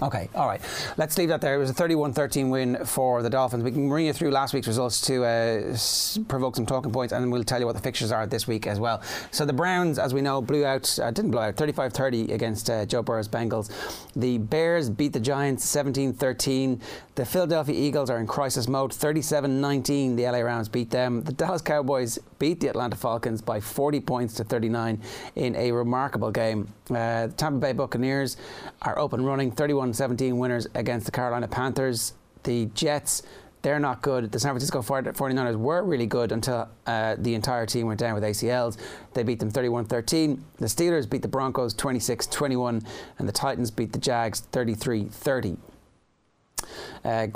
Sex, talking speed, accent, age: male, 190 wpm, Irish, 30-49